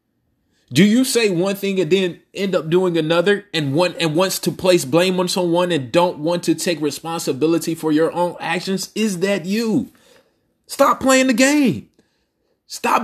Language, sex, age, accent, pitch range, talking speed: English, male, 30-49, American, 165-205 Hz, 175 wpm